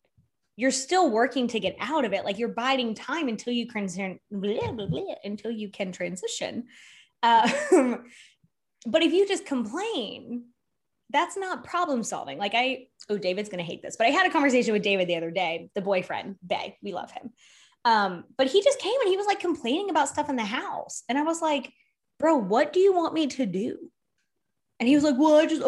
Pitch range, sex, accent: 220-300 Hz, female, American